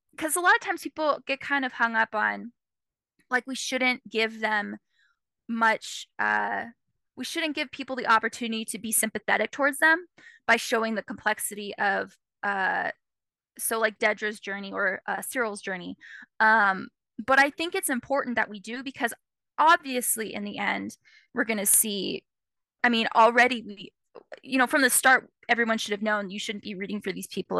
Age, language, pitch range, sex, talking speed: 10-29, English, 215-255 Hz, female, 180 wpm